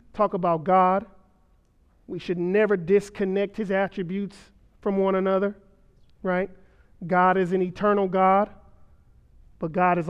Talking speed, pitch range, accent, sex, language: 125 wpm, 165-195 Hz, American, male, English